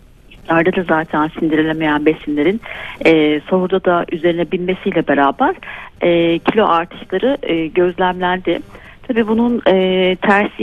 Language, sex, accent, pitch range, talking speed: Turkish, female, native, 160-210 Hz, 105 wpm